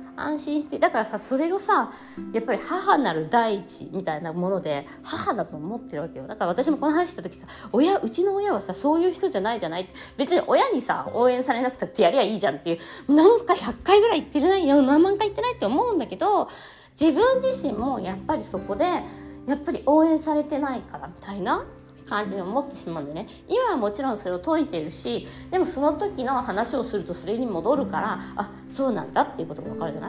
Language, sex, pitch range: Japanese, female, 225-360 Hz